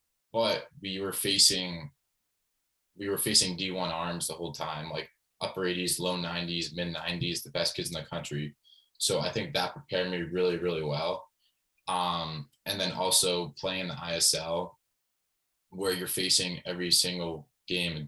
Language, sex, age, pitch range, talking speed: English, male, 20-39, 80-90 Hz, 160 wpm